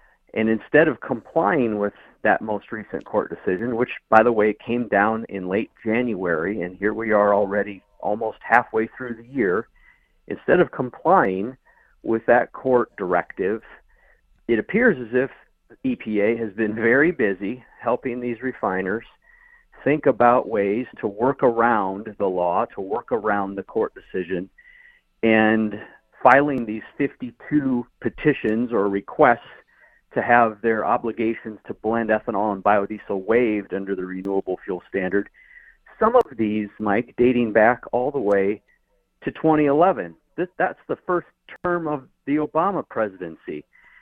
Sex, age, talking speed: male, 50-69, 140 wpm